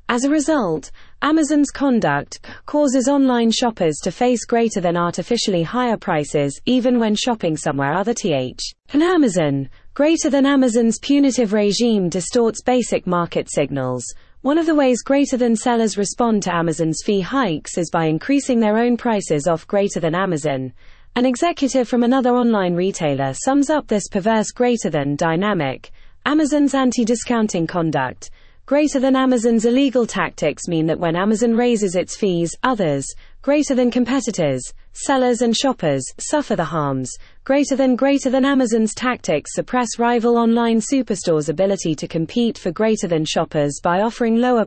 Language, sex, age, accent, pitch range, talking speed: English, female, 30-49, British, 165-250 Hz, 150 wpm